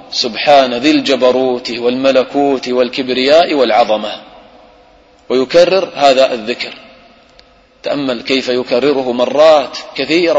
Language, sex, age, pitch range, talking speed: English, male, 30-49, 125-140 Hz, 80 wpm